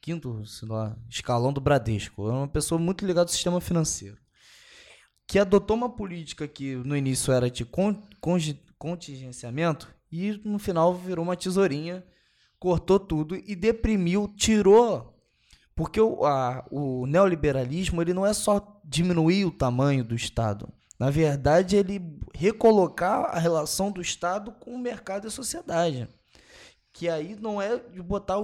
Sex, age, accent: male, 20-39, Brazilian